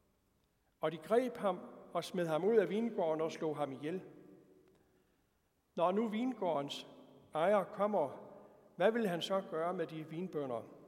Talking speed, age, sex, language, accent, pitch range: 150 wpm, 60-79, male, Danish, native, 155-200 Hz